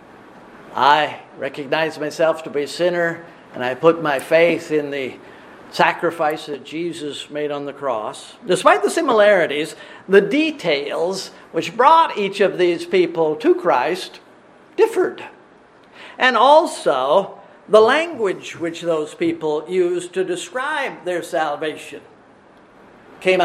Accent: American